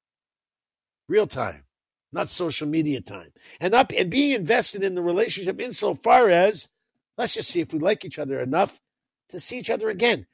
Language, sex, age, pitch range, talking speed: English, male, 50-69, 140-215 Hz, 175 wpm